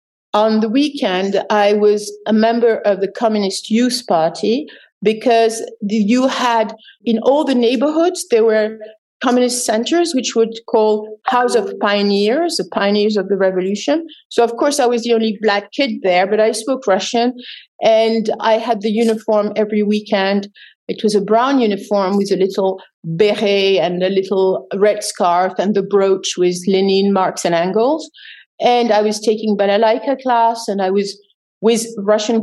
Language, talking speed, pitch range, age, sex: English, 165 wpm, 195-235 Hz, 50-69, female